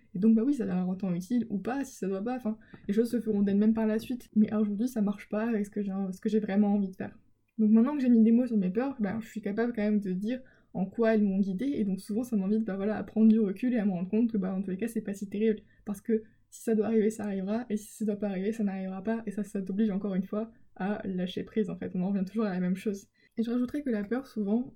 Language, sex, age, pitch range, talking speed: French, female, 20-39, 205-235 Hz, 325 wpm